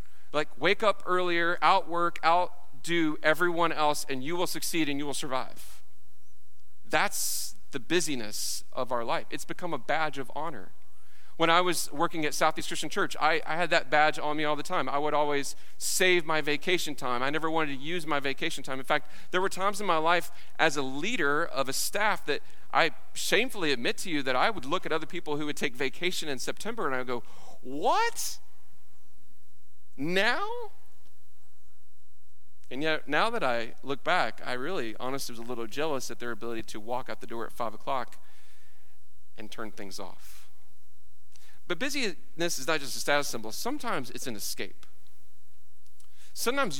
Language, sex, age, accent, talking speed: English, male, 40-59, American, 180 wpm